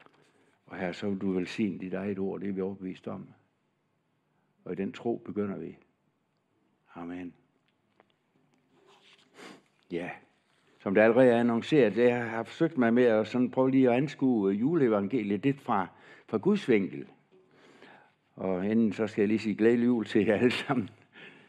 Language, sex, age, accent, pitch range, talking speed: Danish, male, 60-79, native, 95-120 Hz, 160 wpm